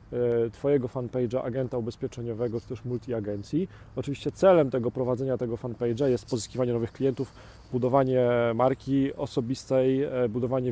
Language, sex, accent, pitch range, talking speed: Polish, male, native, 115-140 Hz, 120 wpm